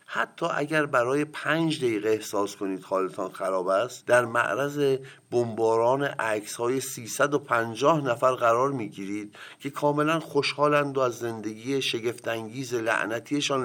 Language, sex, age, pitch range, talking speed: Persian, male, 50-69, 105-145 Hz, 125 wpm